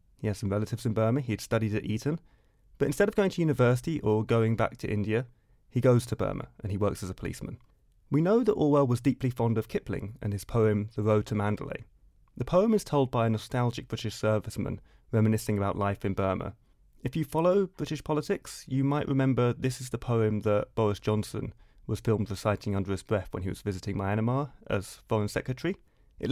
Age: 30-49